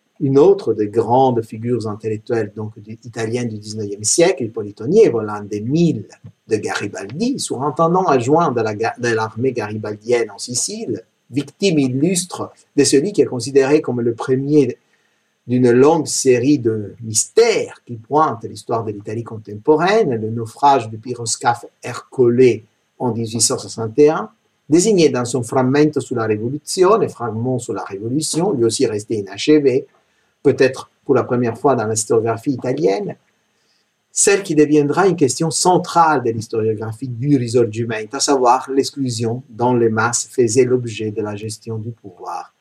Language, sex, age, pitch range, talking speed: French, male, 50-69, 115-140 Hz, 135 wpm